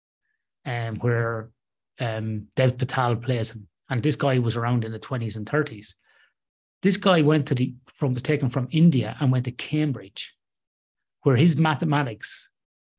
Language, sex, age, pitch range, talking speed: English, male, 30-49, 120-145 Hz, 155 wpm